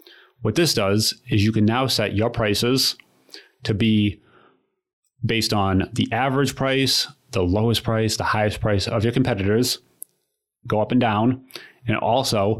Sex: male